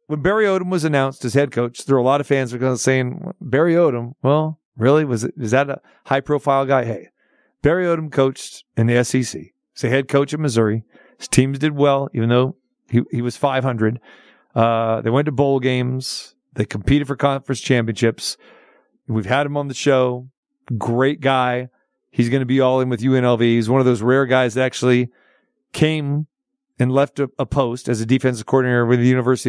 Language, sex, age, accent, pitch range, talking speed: English, male, 40-59, American, 125-150 Hz, 205 wpm